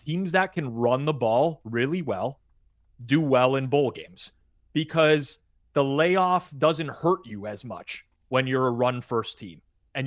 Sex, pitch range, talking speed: male, 115-155 Hz, 165 wpm